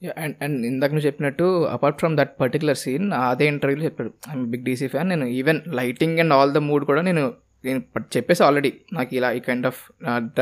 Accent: native